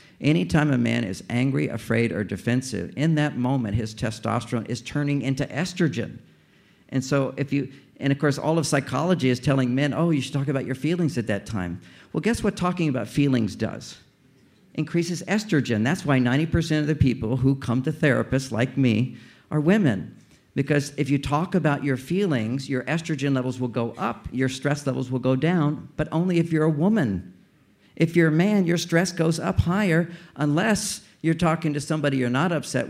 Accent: American